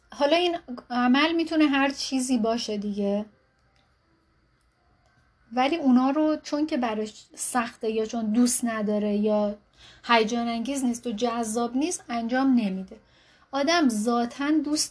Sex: female